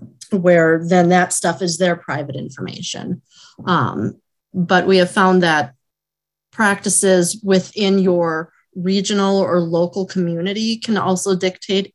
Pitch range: 175-210 Hz